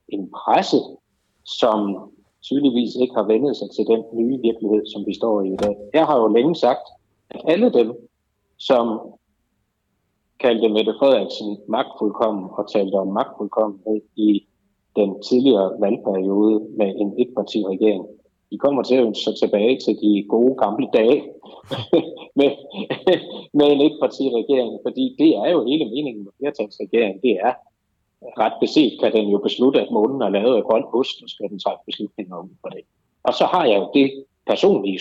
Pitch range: 105-135 Hz